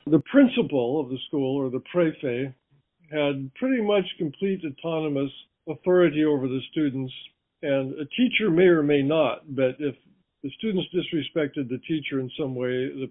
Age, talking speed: 50-69, 160 wpm